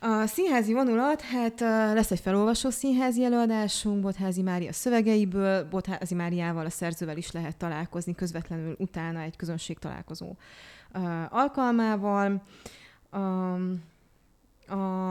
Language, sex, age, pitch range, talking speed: Hungarian, female, 20-39, 175-200 Hz, 105 wpm